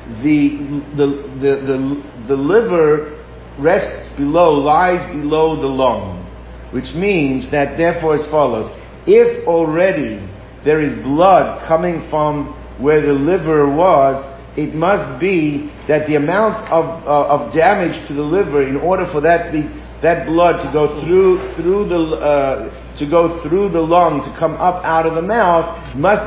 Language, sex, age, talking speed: English, male, 50-69, 155 wpm